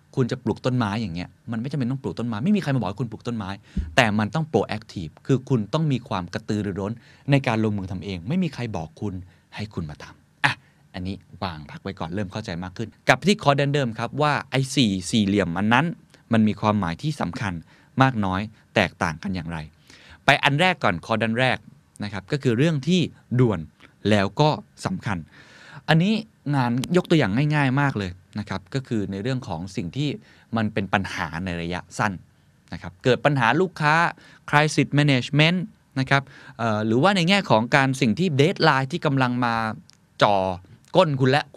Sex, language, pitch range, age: male, Thai, 105-145 Hz, 20-39